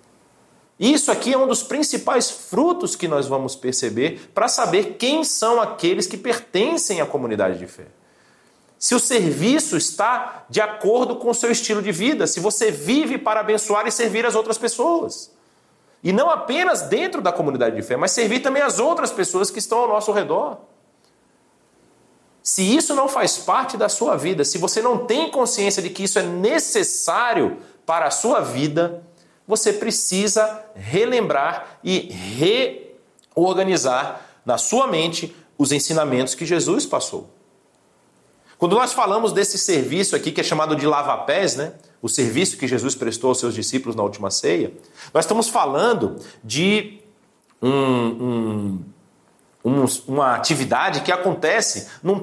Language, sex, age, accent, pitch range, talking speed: Portuguese, male, 40-59, Brazilian, 155-235 Hz, 155 wpm